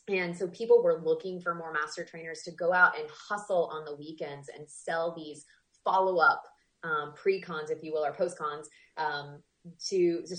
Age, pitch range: 20-39, 155-195 Hz